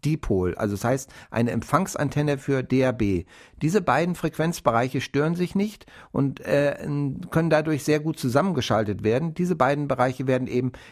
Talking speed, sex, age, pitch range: 150 wpm, male, 60-79, 130-165 Hz